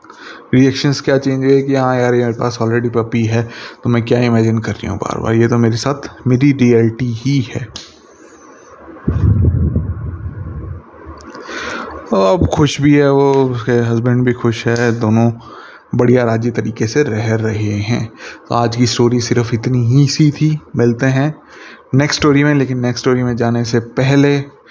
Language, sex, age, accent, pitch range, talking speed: Hindi, male, 20-39, native, 115-130 Hz, 170 wpm